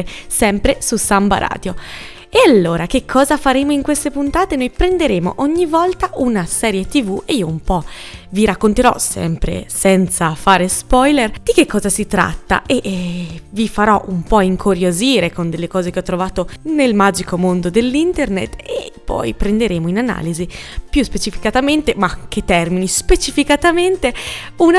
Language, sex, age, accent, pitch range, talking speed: Italian, female, 20-39, native, 190-280 Hz, 155 wpm